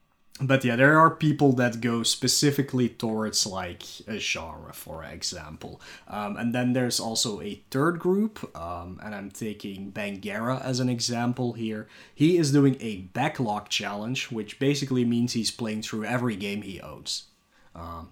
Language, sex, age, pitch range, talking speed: English, male, 20-39, 110-135 Hz, 160 wpm